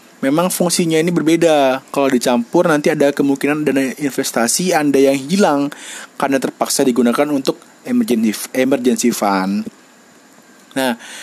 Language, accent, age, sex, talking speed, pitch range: Indonesian, native, 30-49, male, 110 wpm, 135-175 Hz